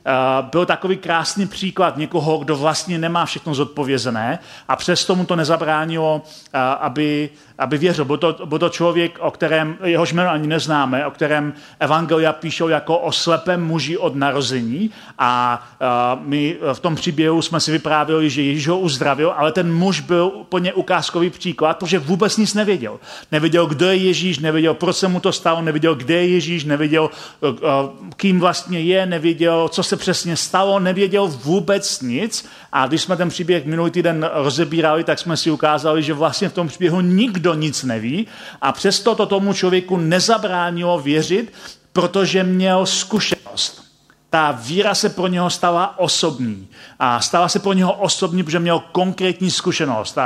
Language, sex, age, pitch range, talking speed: Czech, male, 40-59, 155-185 Hz, 160 wpm